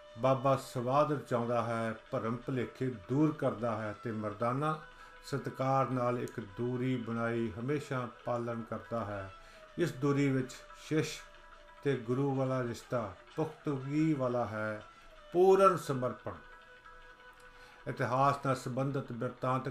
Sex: male